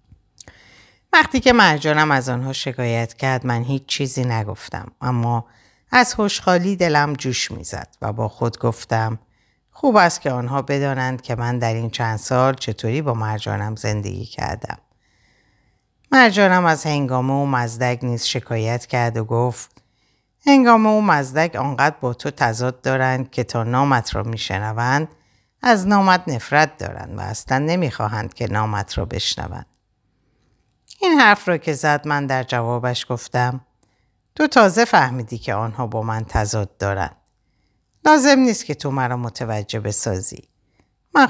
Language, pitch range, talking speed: Persian, 110-150 Hz, 140 wpm